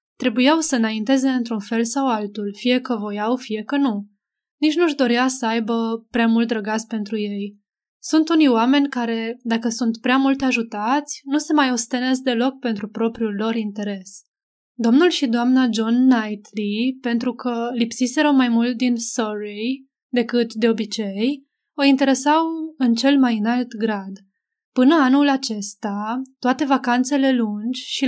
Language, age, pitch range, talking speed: Romanian, 20-39, 225-270 Hz, 150 wpm